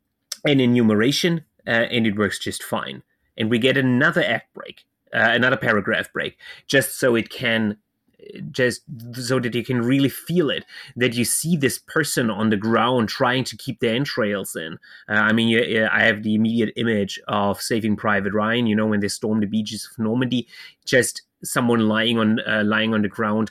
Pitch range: 105-130 Hz